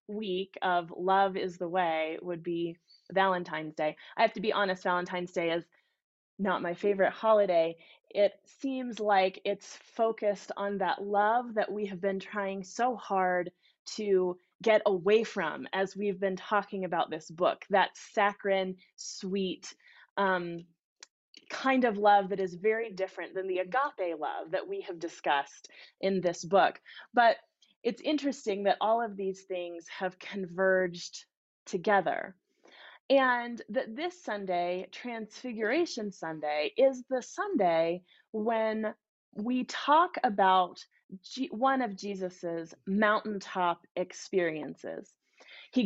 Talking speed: 130 wpm